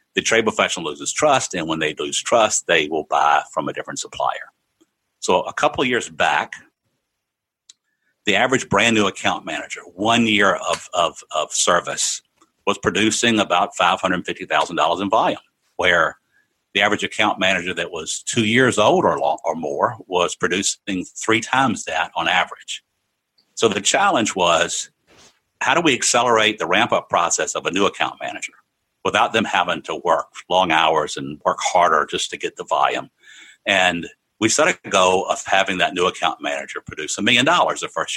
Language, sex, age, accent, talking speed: English, male, 50-69, American, 175 wpm